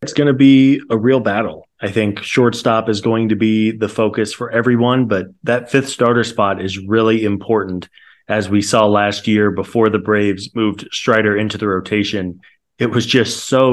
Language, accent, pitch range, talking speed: English, American, 105-120 Hz, 190 wpm